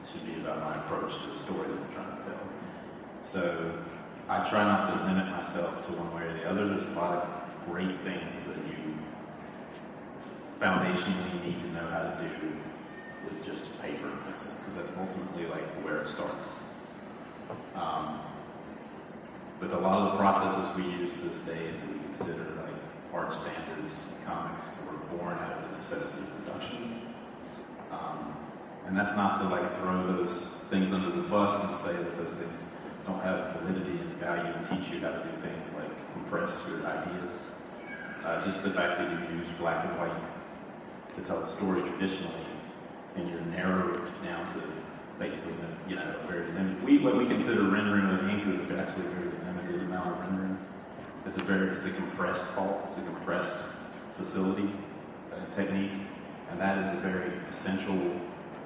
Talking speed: 175 wpm